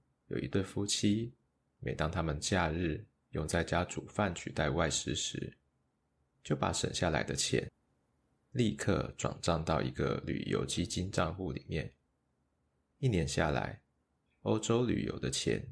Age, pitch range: 20-39, 75-95 Hz